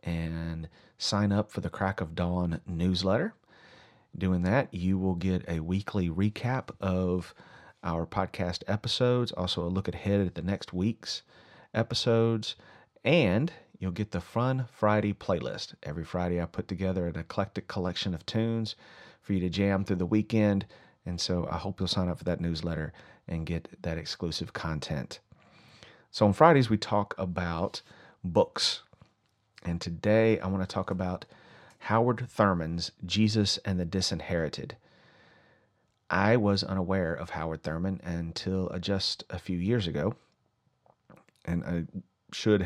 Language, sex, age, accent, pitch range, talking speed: English, male, 40-59, American, 85-105 Hz, 150 wpm